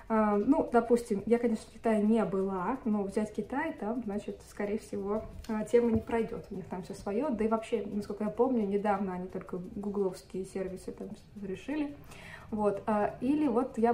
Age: 20-39